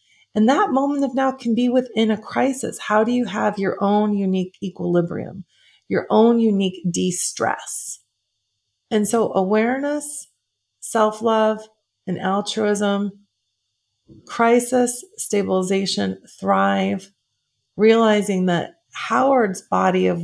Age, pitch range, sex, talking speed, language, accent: 30-49, 180-220 Hz, female, 115 wpm, English, American